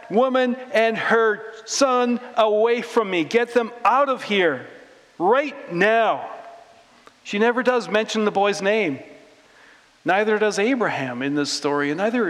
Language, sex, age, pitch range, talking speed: English, male, 50-69, 150-220 Hz, 140 wpm